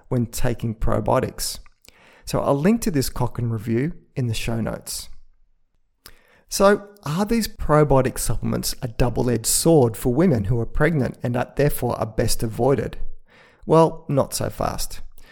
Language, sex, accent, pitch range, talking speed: English, male, Australian, 120-155 Hz, 150 wpm